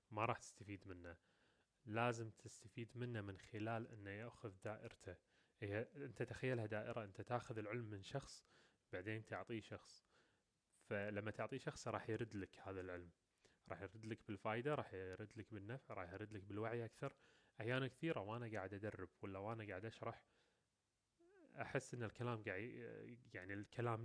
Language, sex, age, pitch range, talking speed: Arabic, male, 20-39, 100-120 Hz, 150 wpm